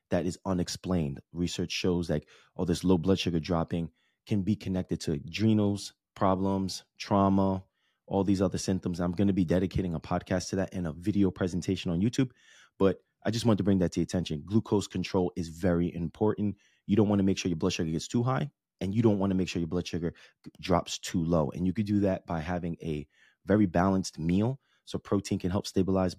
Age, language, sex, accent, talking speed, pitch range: 20-39, English, male, American, 220 wpm, 90-100 Hz